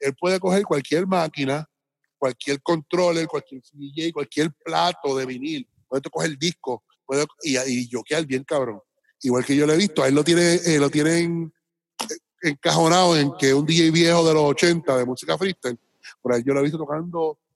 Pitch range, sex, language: 140-175 Hz, male, Spanish